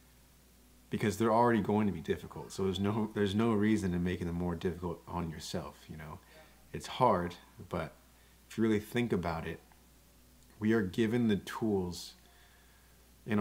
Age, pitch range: 30-49, 80-100 Hz